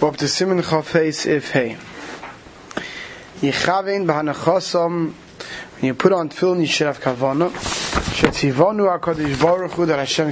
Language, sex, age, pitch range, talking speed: English, male, 30-49, 150-185 Hz, 150 wpm